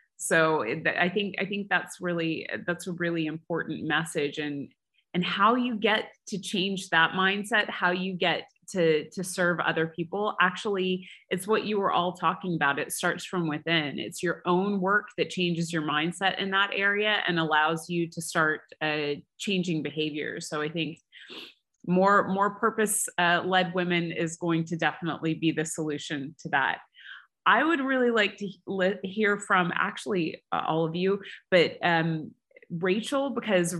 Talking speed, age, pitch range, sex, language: 165 wpm, 30-49, 165-205 Hz, female, English